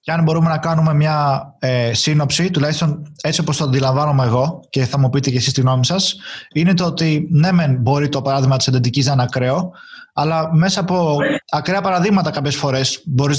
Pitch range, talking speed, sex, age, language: 135-165 Hz, 190 wpm, male, 20-39, Greek